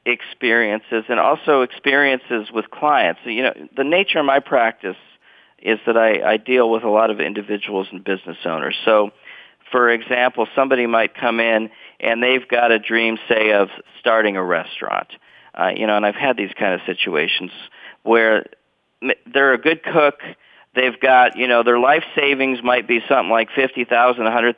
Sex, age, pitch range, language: male, 40-59, 110-130 Hz, English